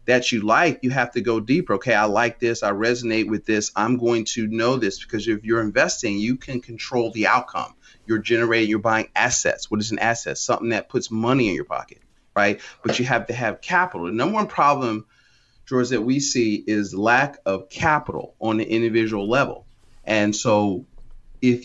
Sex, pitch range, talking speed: male, 110-125 Hz, 200 wpm